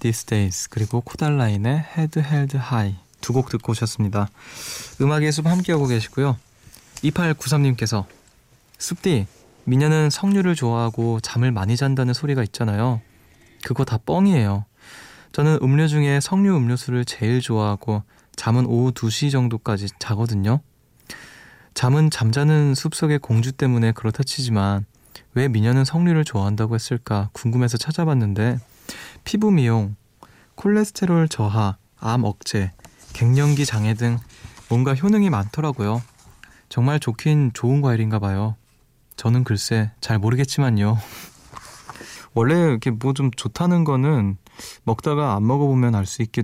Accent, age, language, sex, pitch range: native, 20-39, Korean, male, 110-140 Hz